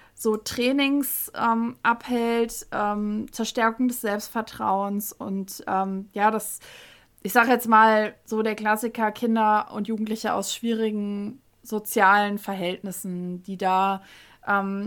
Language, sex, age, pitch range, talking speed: German, female, 20-39, 195-225 Hz, 115 wpm